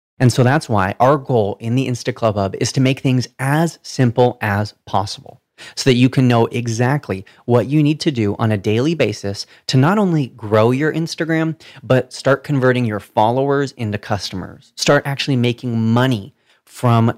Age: 30-49